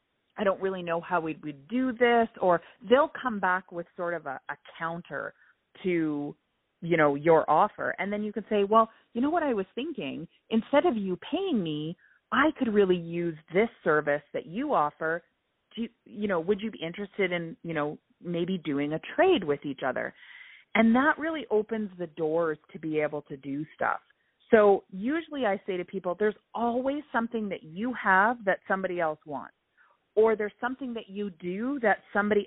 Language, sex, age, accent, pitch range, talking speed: English, female, 30-49, American, 160-225 Hz, 190 wpm